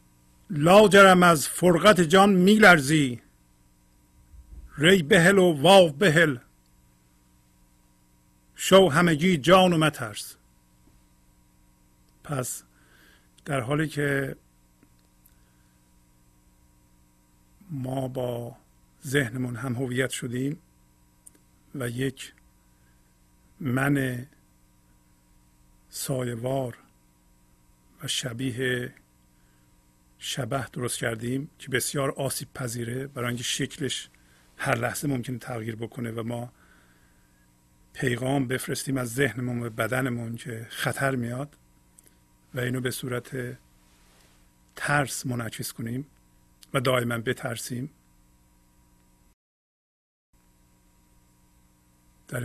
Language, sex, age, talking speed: Persian, male, 50-69, 75 wpm